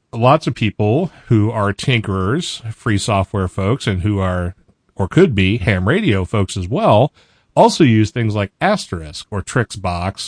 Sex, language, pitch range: male, English, 100-125 Hz